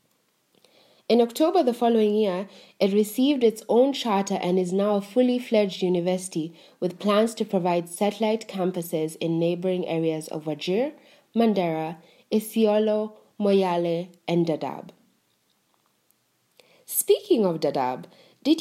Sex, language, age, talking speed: female, English, 20-39, 120 wpm